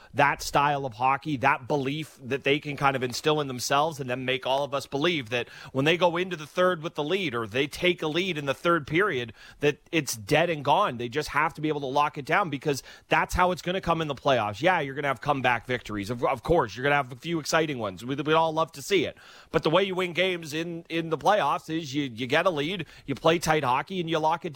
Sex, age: male, 30-49